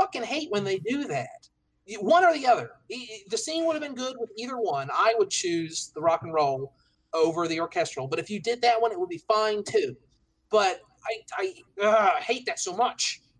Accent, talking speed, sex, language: American, 215 wpm, male, English